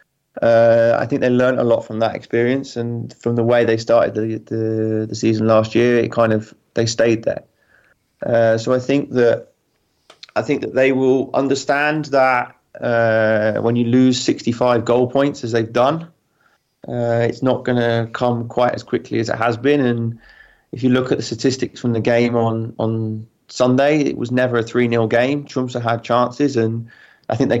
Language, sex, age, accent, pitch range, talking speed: English, male, 30-49, British, 115-125 Hz, 190 wpm